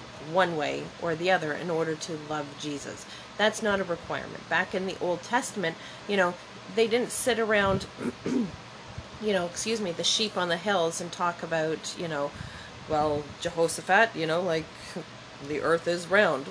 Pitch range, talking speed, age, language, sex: 175-250 Hz, 175 wpm, 30-49, English, female